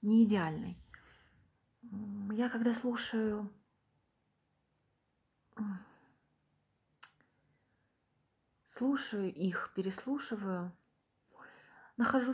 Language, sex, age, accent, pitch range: Ukrainian, female, 30-49, native, 185-225 Hz